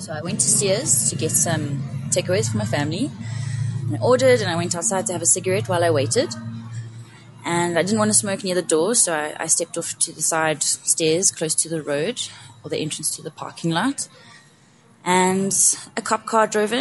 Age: 20-39